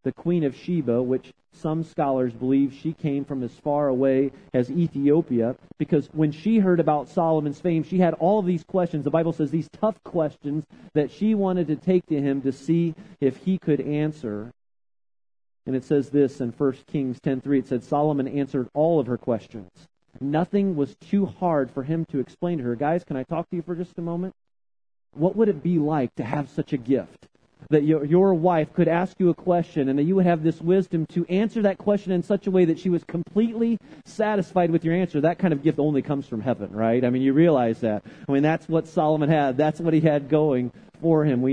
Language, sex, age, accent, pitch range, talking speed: English, male, 40-59, American, 130-165 Hz, 225 wpm